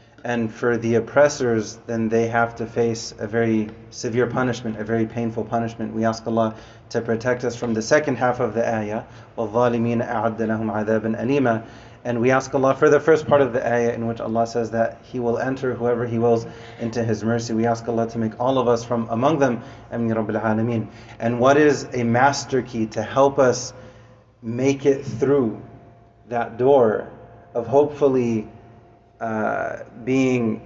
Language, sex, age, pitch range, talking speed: English, male, 30-49, 115-125 Hz, 165 wpm